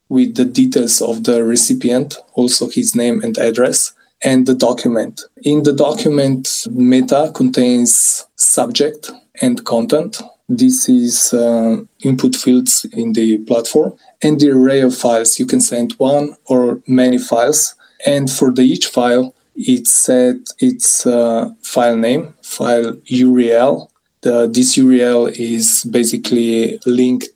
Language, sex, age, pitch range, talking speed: English, male, 20-39, 120-150 Hz, 130 wpm